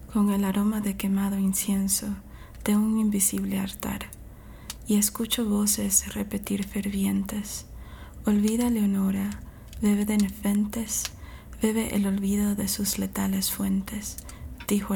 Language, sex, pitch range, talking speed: English, female, 195-215 Hz, 110 wpm